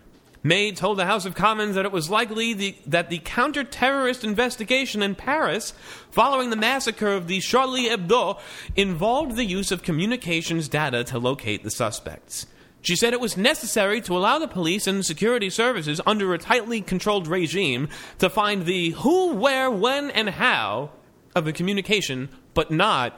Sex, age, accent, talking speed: male, 30-49, American, 165 wpm